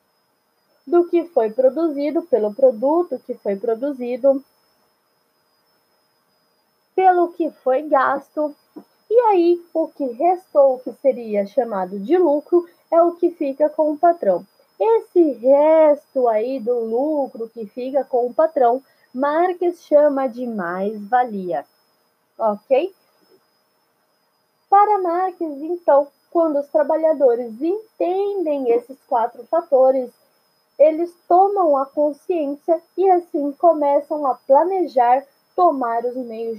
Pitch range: 240-340 Hz